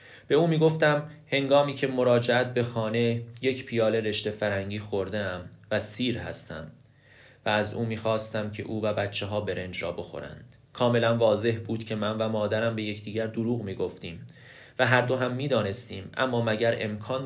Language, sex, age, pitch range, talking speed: Persian, male, 30-49, 105-130 Hz, 160 wpm